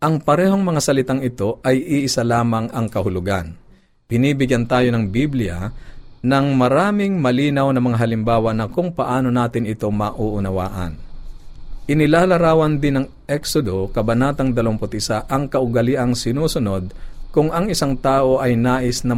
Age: 50-69